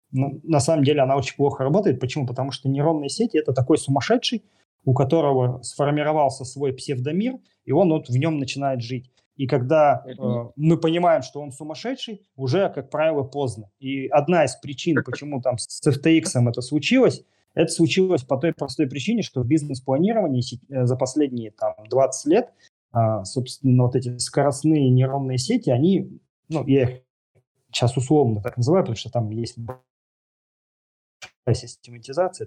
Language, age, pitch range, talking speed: Russian, 30-49, 125-160 Hz, 150 wpm